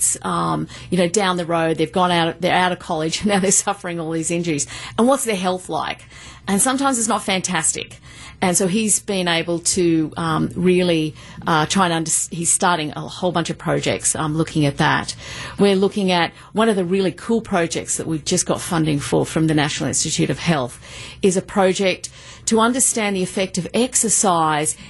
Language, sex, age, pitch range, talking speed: English, female, 40-59, 165-205 Hz, 220 wpm